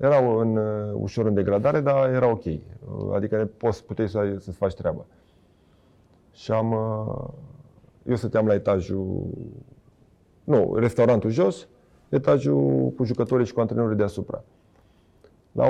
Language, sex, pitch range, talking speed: Romanian, male, 100-125 Hz, 115 wpm